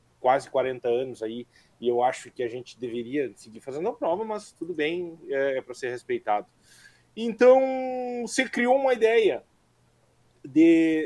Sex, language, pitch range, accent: male, Portuguese, 125-200 Hz, Brazilian